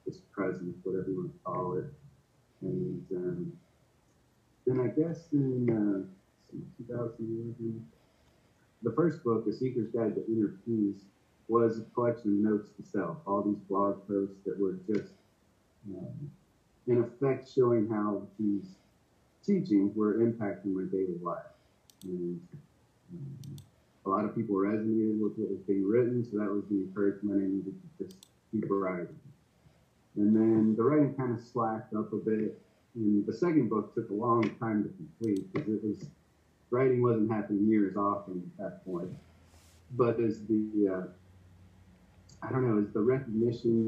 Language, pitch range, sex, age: English, 100-115 Hz, male, 40-59